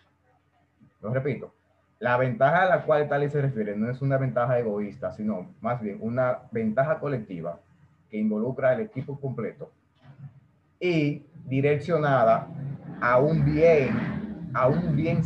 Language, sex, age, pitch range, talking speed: Spanish, male, 30-49, 125-155 Hz, 140 wpm